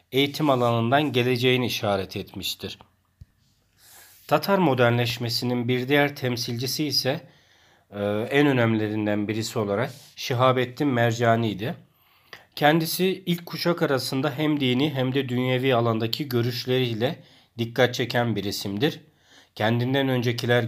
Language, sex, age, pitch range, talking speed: Turkish, male, 40-59, 115-140 Hz, 100 wpm